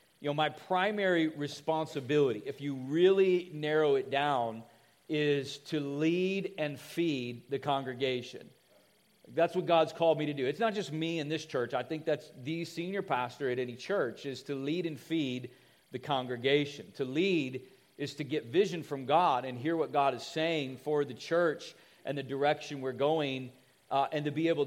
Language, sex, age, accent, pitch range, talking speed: English, male, 40-59, American, 130-160 Hz, 180 wpm